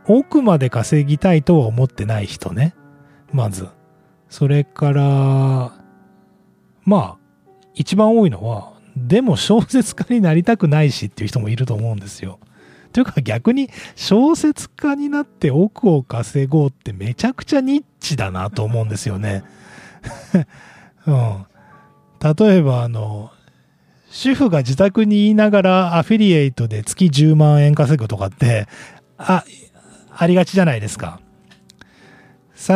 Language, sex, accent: Japanese, male, native